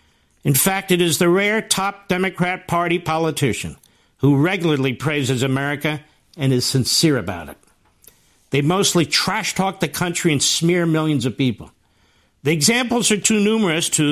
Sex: male